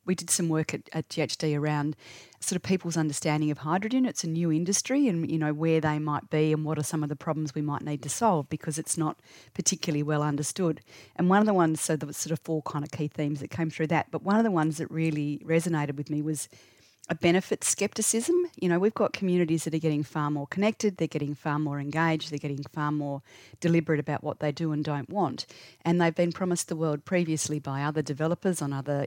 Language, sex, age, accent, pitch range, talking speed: English, female, 30-49, Australian, 145-170 Hz, 240 wpm